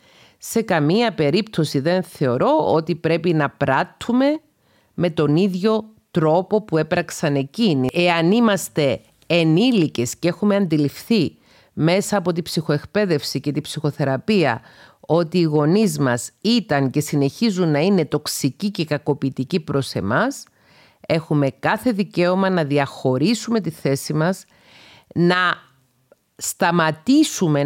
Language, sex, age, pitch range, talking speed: Greek, female, 40-59, 145-185 Hz, 115 wpm